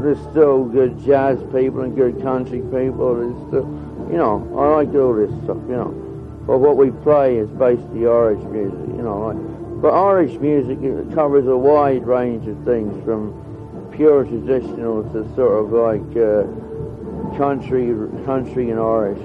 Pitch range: 110-130 Hz